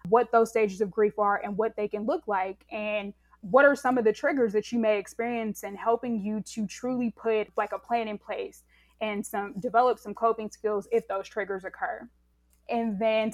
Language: English